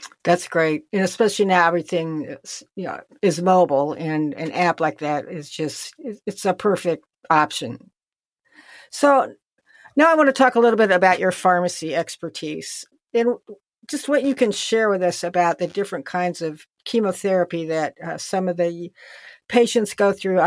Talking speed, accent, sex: 165 wpm, American, female